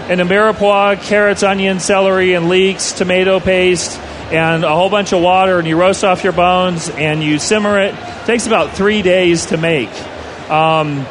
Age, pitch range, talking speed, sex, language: 40-59, 165-200 Hz, 180 wpm, male, English